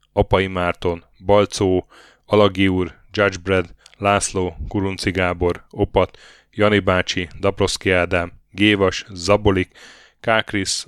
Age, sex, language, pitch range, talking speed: 10-29, male, Hungarian, 90-105 Hz, 90 wpm